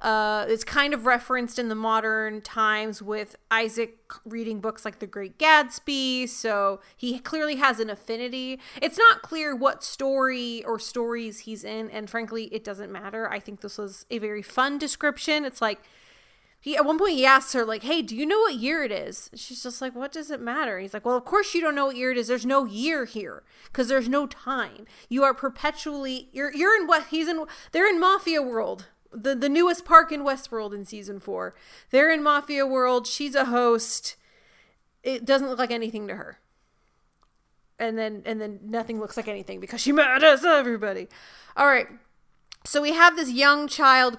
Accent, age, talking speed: American, 30-49, 200 wpm